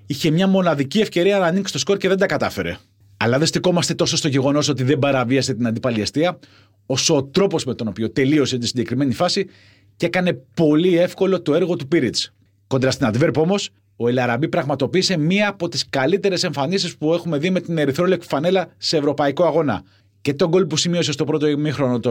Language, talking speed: Greek, 195 wpm